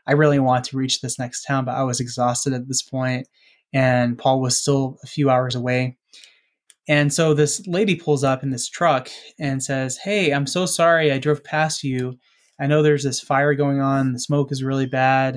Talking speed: 210 wpm